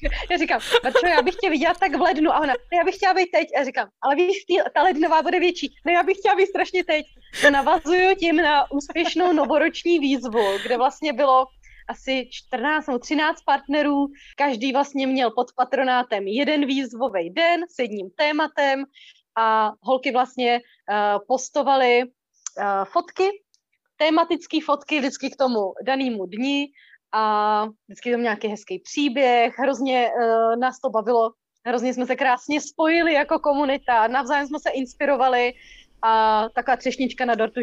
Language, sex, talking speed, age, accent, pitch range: Czech, female, 160 wpm, 20-39, native, 235-300 Hz